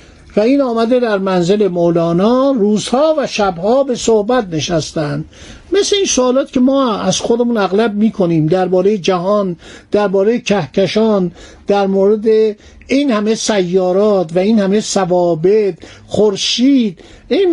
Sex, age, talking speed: male, 60-79, 125 wpm